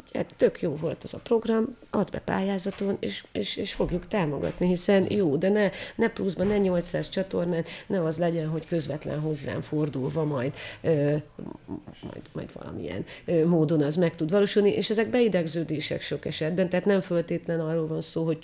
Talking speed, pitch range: 175 wpm, 155-195 Hz